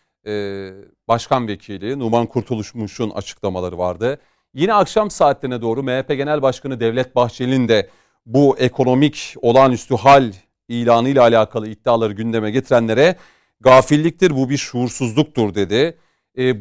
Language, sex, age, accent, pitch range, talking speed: Turkish, male, 40-59, native, 110-150 Hz, 120 wpm